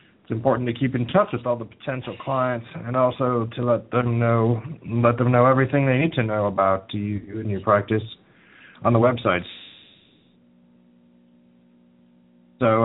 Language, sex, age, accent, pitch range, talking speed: English, male, 40-59, American, 105-130 Hz, 155 wpm